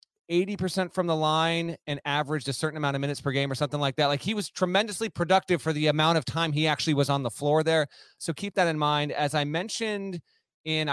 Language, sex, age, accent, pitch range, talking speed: English, male, 30-49, American, 135-180 Hz, 230 wpm